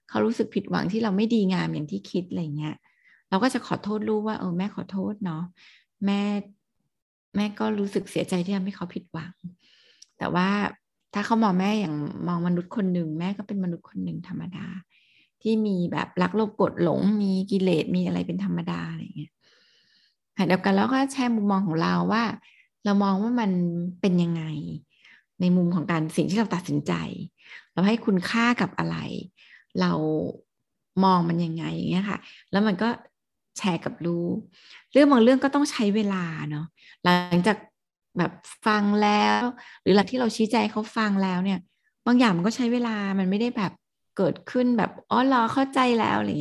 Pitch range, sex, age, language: 175-215 Hz, female, 20-39, Thai